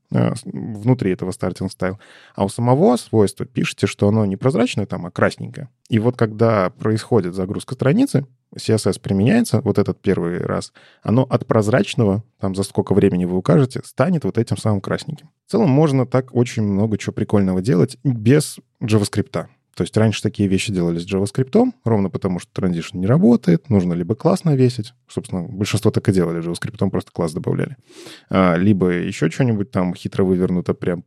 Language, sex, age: Russian, male, 20-39